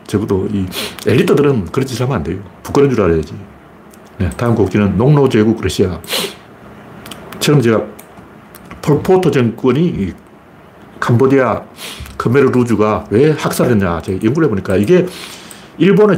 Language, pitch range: Korean, 105-160 Hz